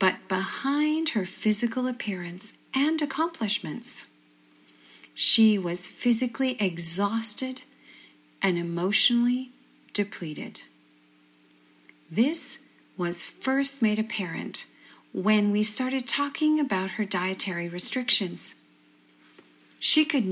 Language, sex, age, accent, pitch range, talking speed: English, female, 40-59, American, 175-240 Hz, 85 wpm